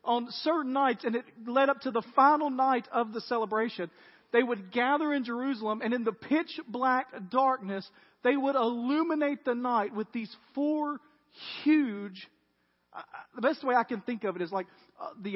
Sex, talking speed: male, 180 wpm